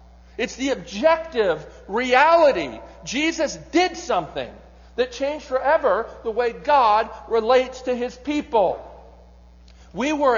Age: 50-69